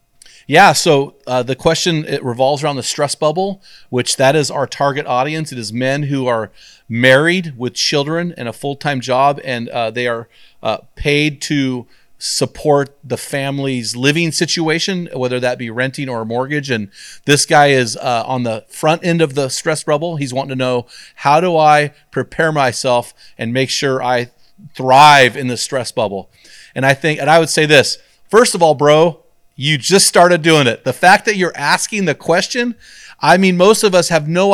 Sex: male